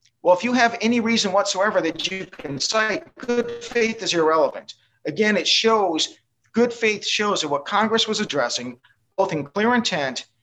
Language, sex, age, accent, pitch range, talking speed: English, male, 40-59, American, 140-200 Hz, 175 wpm